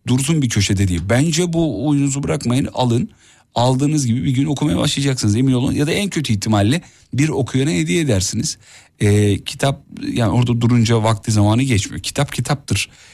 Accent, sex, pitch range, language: native, male, 100-140 Hz, Turkish